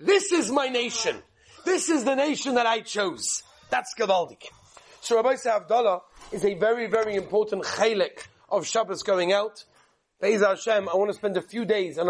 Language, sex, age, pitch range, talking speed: English, male, 40-59, 200-250 Hz, 180 wpm